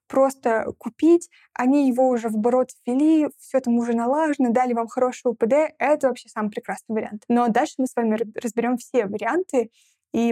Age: 20-39